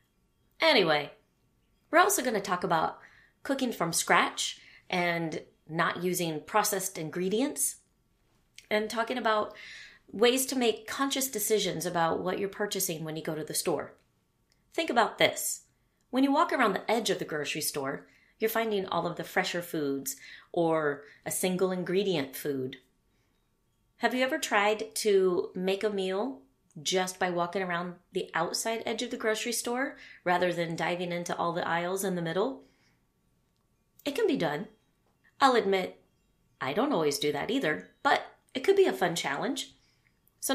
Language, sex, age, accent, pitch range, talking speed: English, female, 30-49, American, 170-230 Hz, 155 wpm